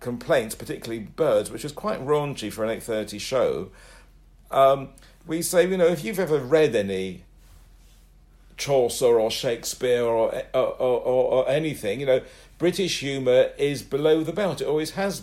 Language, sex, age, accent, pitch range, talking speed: English, male, 60-79, British, 115-150 Hz, 160 wpm